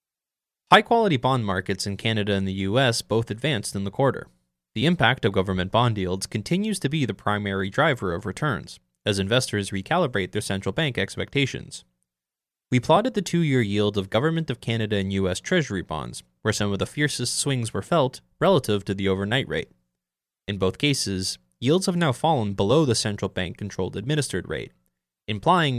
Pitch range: 95-150 Hz